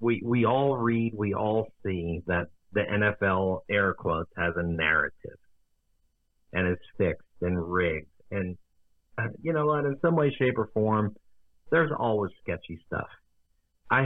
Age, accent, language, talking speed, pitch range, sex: 50-69, American, English, 155 wpm, 90-120 Hz, male